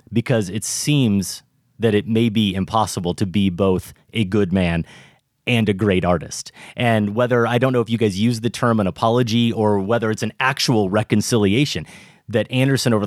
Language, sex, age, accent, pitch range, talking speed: English, male, 30-49, American, 105-130 Hz, 185 wpm